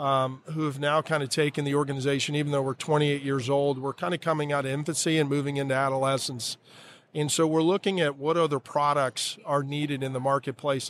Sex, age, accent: male, 40-59, American